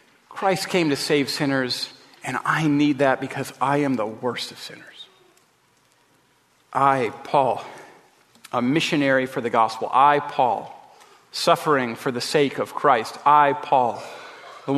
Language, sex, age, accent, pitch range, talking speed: English, male, 40-59, American, 135-175 Hz, 140 wpm